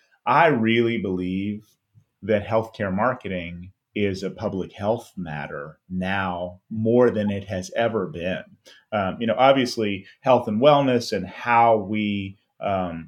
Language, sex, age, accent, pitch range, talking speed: English, male, 30-49, American, 90-115 Hz, 135 wpm